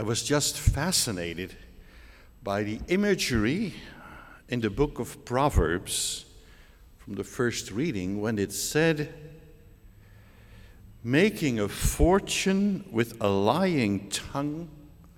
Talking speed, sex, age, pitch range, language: 105 wpm, male, 60-79, 95-135 Hz, English